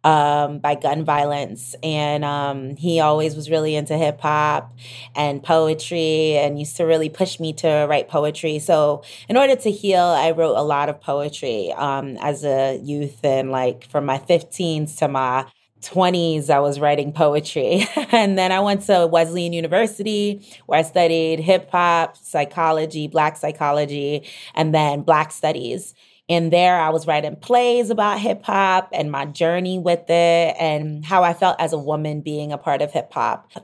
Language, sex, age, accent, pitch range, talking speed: English, female, 20-39, American, 150-190 Hz, 175 wpm